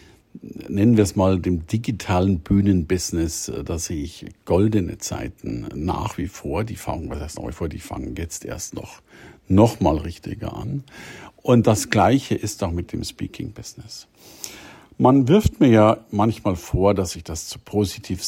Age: 50-69